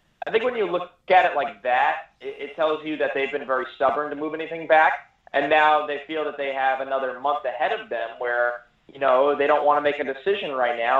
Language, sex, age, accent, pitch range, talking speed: English, male, 30-49, American, 120-150 Hz, 245 wpm